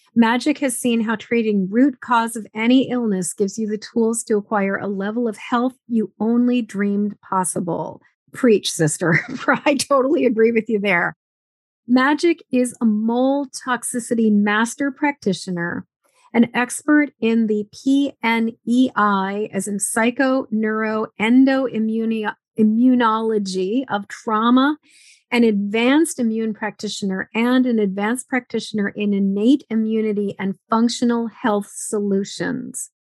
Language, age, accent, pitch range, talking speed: English, 40-59, American, 205-255 Hz, 120 wpm